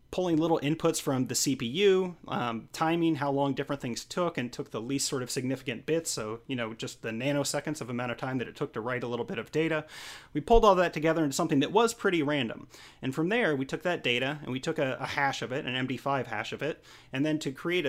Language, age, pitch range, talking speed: English, 30-49, 125-160 Hz, 255 wpm